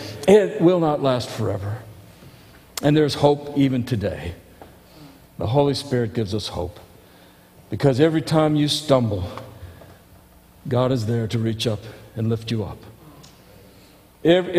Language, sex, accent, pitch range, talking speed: English, male, American, 105-150 Hz, 130 wpm